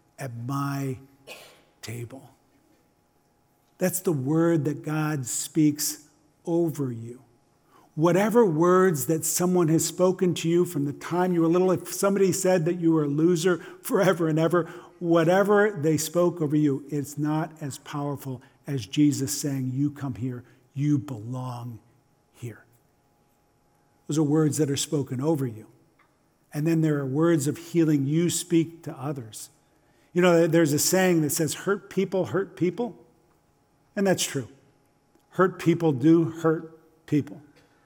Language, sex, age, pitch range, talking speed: English, male, 50-69, 140-170 Hz, 145 wpm